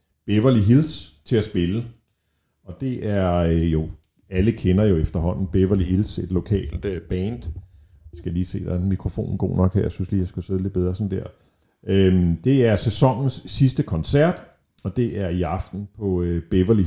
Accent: native